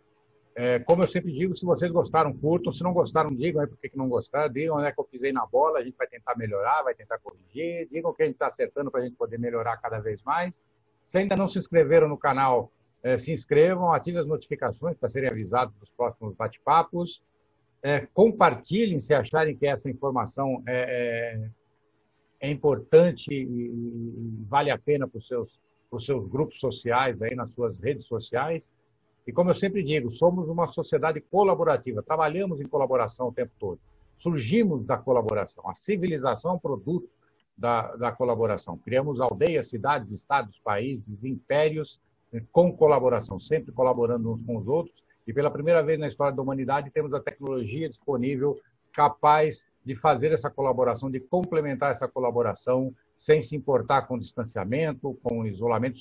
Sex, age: male, 60-79